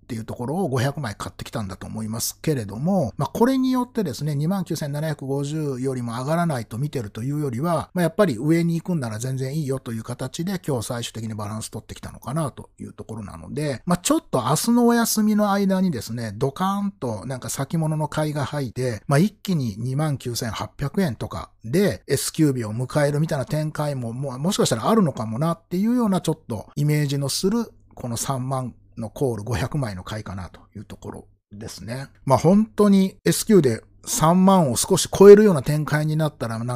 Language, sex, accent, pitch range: Japanese, male, native, 115-165 Hz